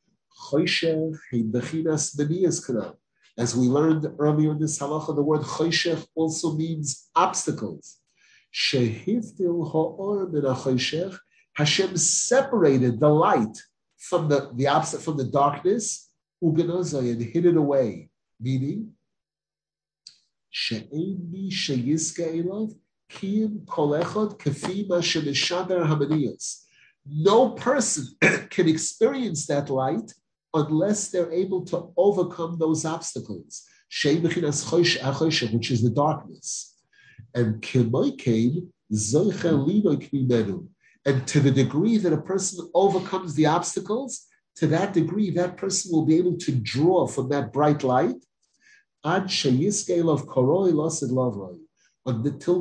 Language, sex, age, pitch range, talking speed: English, male, 50-69, 140-180 Hz, 100 wpm